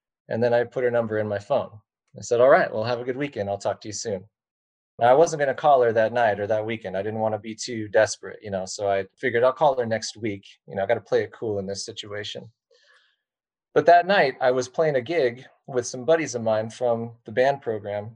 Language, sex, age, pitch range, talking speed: English, male, 20-39, 110-130 Hz, 250 wpm